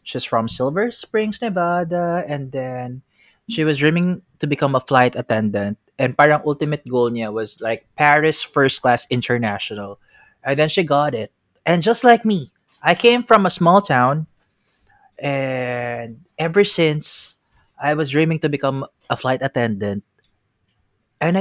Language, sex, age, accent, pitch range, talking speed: Filipino, male, 20-39, native, 125-180 Hz, 150 wpm